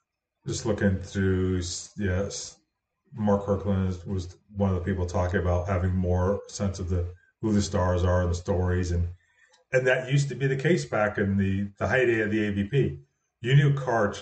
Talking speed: 190 wpm